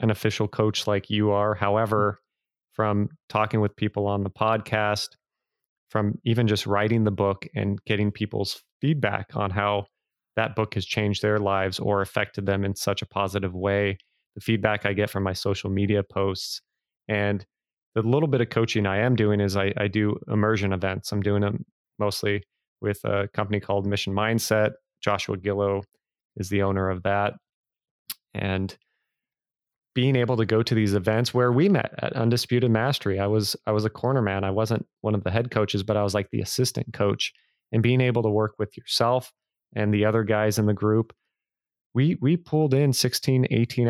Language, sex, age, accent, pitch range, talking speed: English, male, 30-49, American, 100-115 Hz, 185 wpm